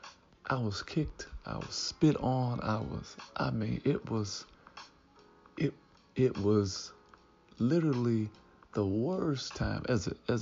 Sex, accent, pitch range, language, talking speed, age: male, American, 100-125 Hz, English, 110 wpm, 50-69